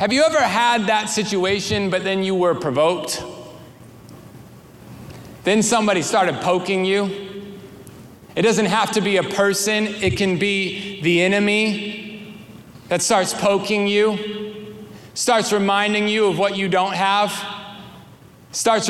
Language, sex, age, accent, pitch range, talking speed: English, male, 30-49, American, 180-215 Hz, 130 wpm